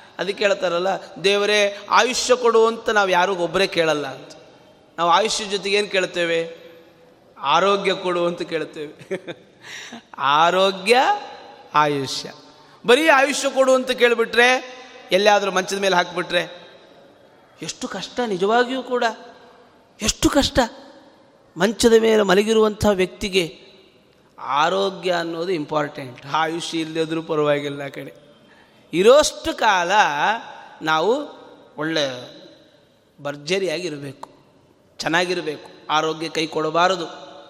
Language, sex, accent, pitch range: Kannada, male, native, 175-245 Hz